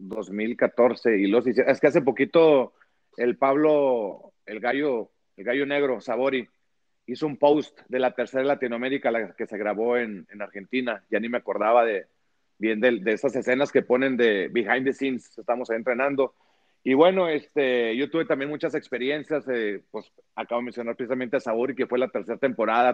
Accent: Mexican